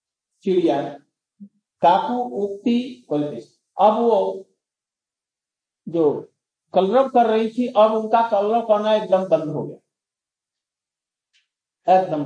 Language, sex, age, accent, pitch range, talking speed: Hindi, male, 50-69, native, 185-235 Hz, 65 wpm